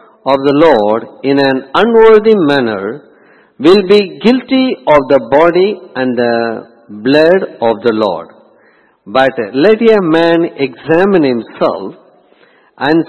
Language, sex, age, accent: English, male, 50-69, Indian